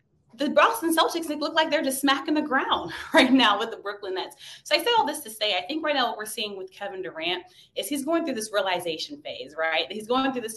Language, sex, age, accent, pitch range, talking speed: English, female, 20-39, American, 190-275 Hz, 260 wpm